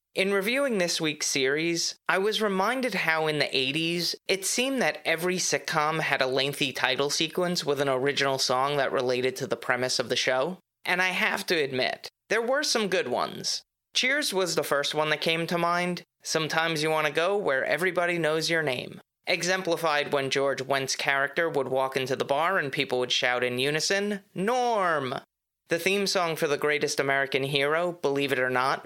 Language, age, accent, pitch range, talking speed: English, 30-49, American, 135-180 Hz, 190 wpm